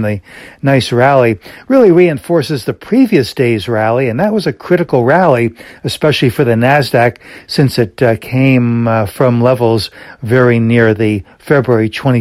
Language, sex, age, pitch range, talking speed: English, male, 60-79, 115-135 Hz, 145 wpm